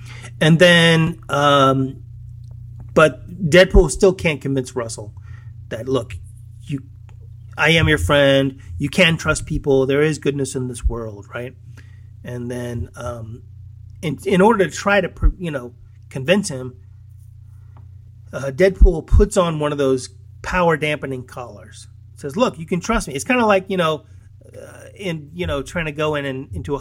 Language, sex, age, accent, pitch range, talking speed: English, male, 30-49, American, 115-165 Hz, 165 wpm